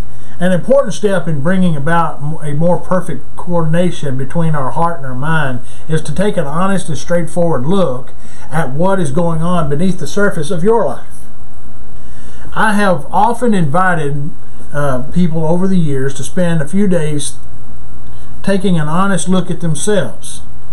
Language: English